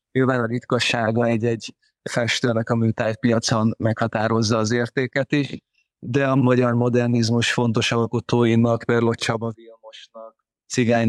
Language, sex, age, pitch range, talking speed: Hungarian, male, 20-39, 110-120 Hz, 115 wpm